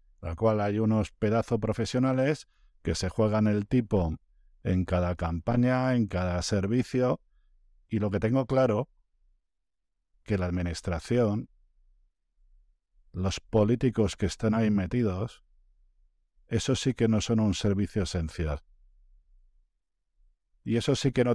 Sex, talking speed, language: male, 125 wpm, Spanish